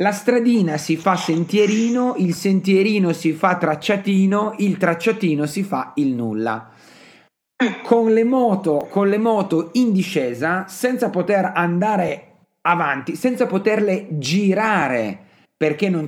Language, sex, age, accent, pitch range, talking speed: Italian, male, 40-59, native, 155-200 Hz, 115 wpm